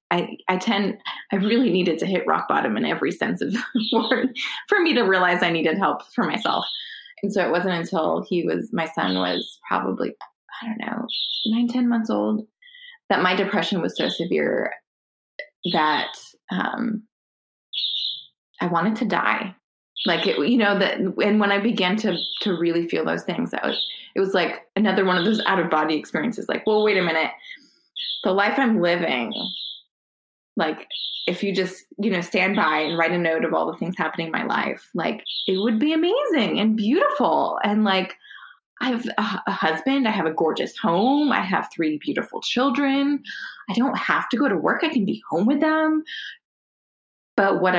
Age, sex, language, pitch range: 20-39, female, English, 180-240 Hz